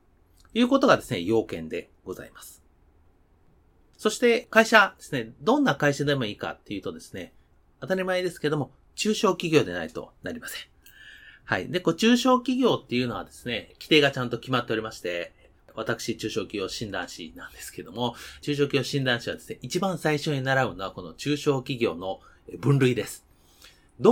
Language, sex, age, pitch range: Japanese, male, 30-49, 95-150 Hz